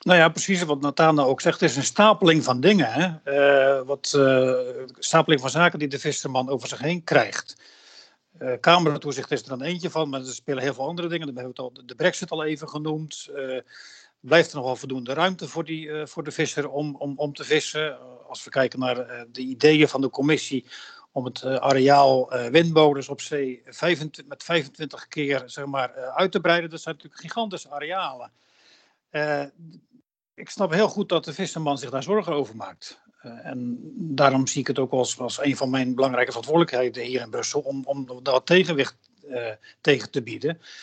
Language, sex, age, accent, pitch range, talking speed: Dutch, male, 50-69, Dutch, 130-165 Hz, 205 wpm